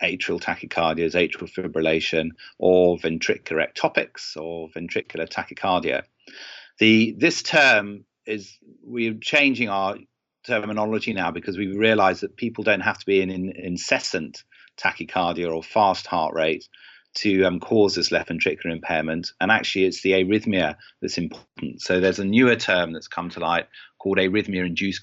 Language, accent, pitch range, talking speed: English, British, 85-100 Hz, 145 wpm